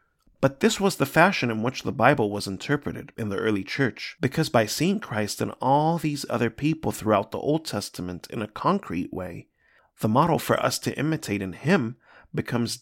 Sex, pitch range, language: male, 100-145 Hz, English